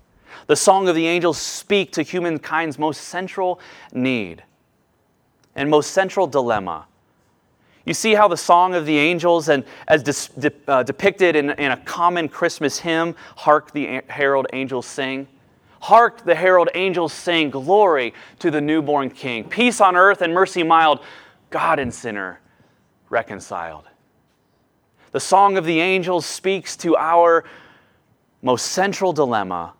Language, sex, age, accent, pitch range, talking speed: English, male, 30-49, American, 135-175 Hz, 145 wpm